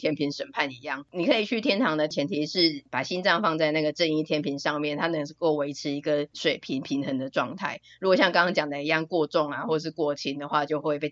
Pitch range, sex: 145-170 Hz, female